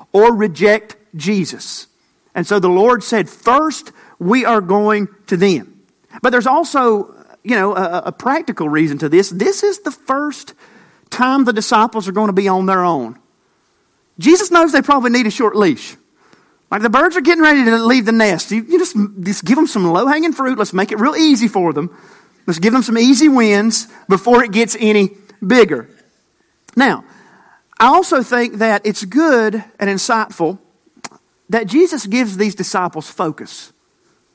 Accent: American